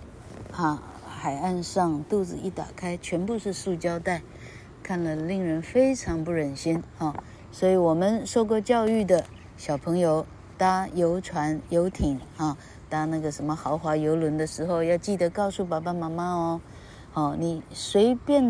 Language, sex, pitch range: Chinese, female, 145-195 Hz